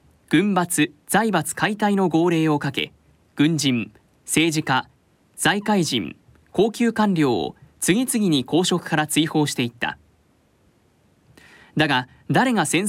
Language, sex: Japanese, male